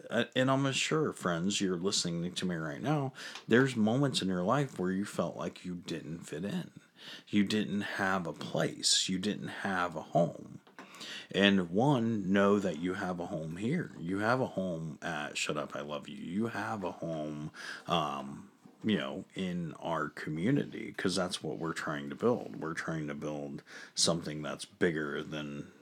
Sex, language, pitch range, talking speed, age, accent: male, English, 80-110 Hz, 180 wpm, 40-59, American